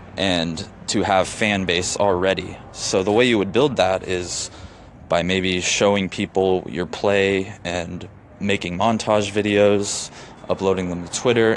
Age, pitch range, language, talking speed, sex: 20-39, 90-105 Hz, English, 145 wpm, male